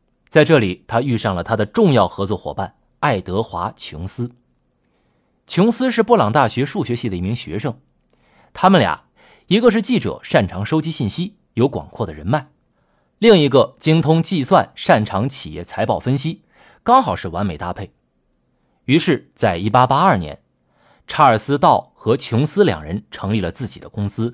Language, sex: Chinese, male